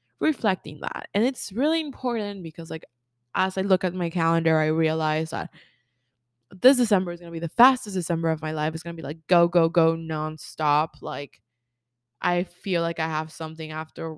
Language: English